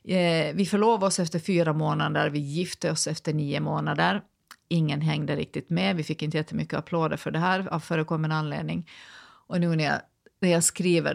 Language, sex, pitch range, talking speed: Swedish, female, 155-200 Hz, 185 wpm